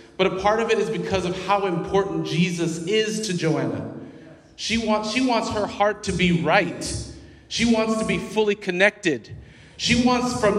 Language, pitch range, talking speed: English, 150-195 Hz, 180 wpm